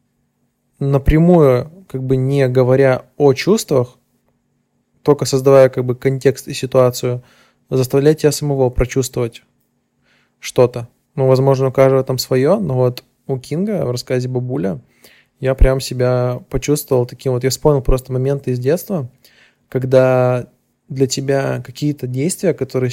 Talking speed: 130 wpm